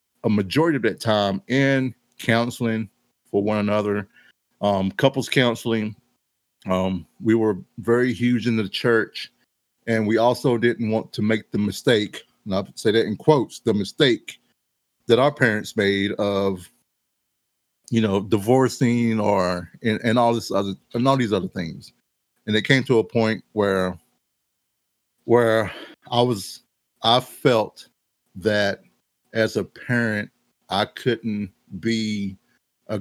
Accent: American